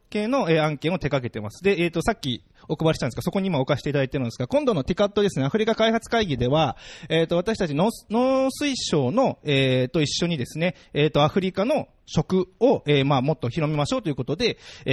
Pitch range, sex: 130-195 Hz, male